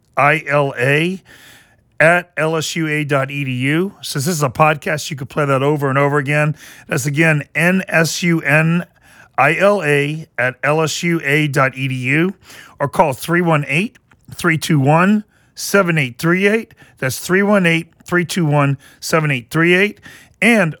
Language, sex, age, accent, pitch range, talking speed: English, male, 40-59, American, 135-175 Hz, 90 wpm